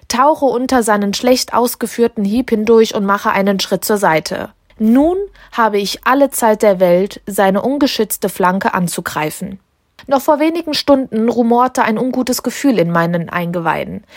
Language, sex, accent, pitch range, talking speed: German, female, German, 195-255 Hz, 150 wpm